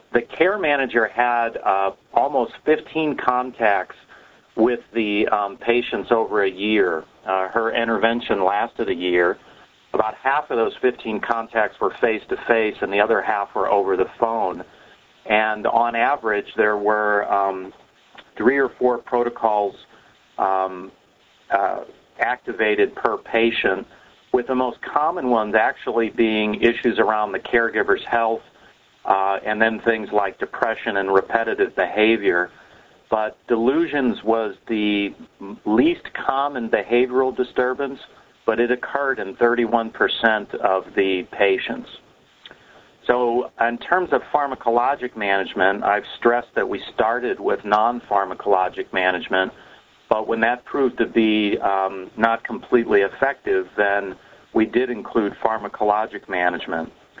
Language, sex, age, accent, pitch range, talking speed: English, male, 50-69, American, 100-125 Hz, 125 wpm